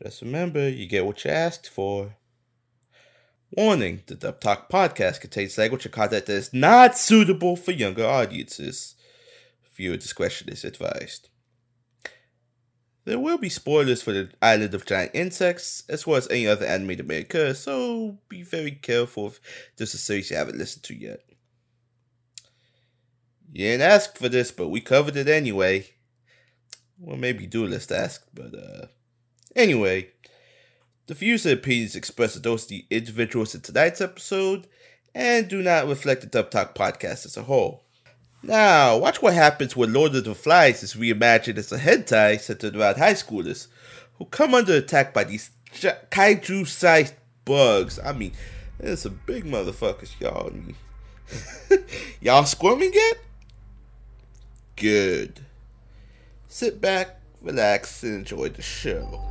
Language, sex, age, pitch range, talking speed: English, male, 20-39, 115-175 Hz, 150 wpm